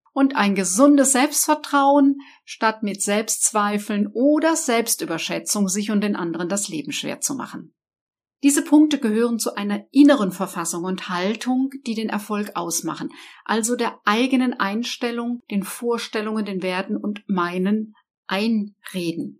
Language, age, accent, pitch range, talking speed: German, 50-69, German, 200-255 Hz, 130 wpm